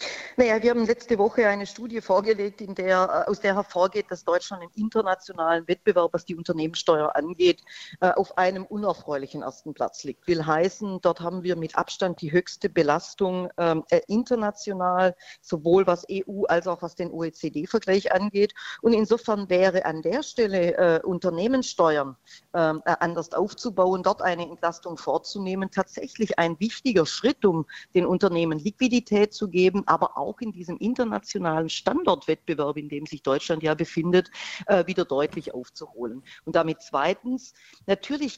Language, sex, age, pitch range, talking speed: German, female, 40-59, 165-200 Hz, 145 wpm